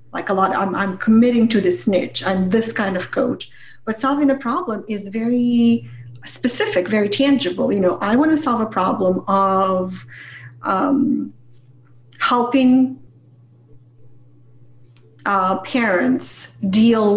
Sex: female